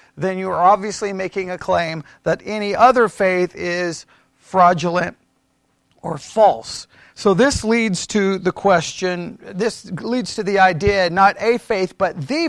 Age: 40-59